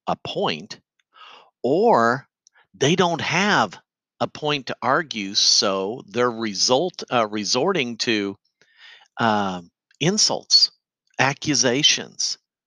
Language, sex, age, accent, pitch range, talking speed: English, male, 50-69, American, 110-150 Hz, 90 wpm